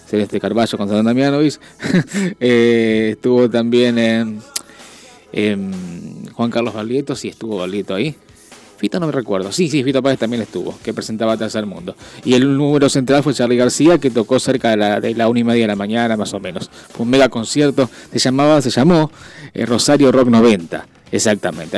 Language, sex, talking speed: Spanish, male, 195 wpm